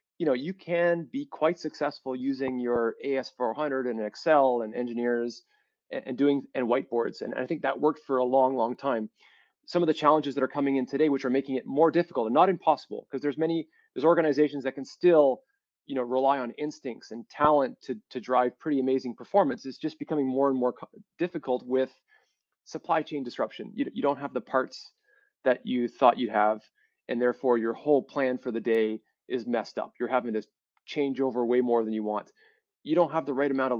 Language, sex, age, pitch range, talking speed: English, male, 30-49, 125-155 Hz, 210 wpm